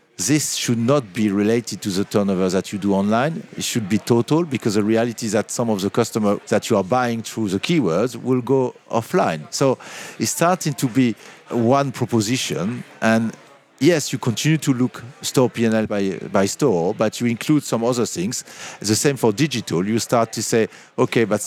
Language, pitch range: English, 110-130 Hz